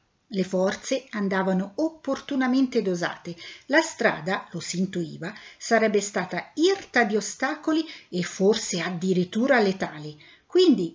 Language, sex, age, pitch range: Italian, female, 50-69, 180-255 Hz